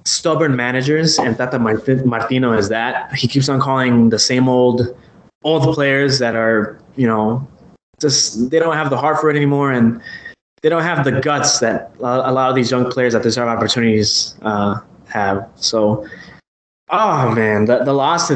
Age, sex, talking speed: 20-39, male, 175 wpm